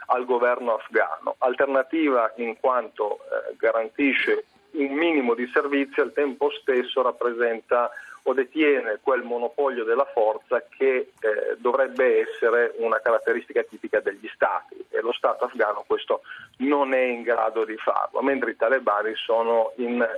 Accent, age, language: native, 40-59, Italian